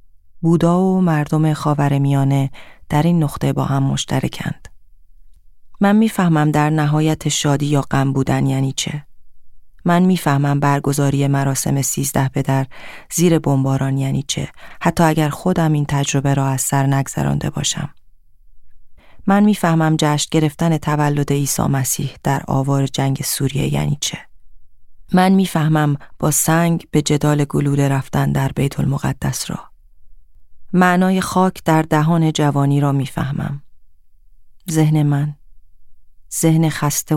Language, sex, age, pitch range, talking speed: Persian, female, 30-49, 130-160 Hz, 125 wpm